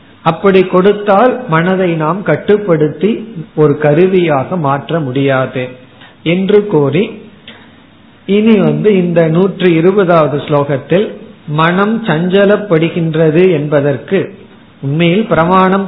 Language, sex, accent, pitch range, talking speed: Tamil, male, native, 145-195 Hz, 80 wpm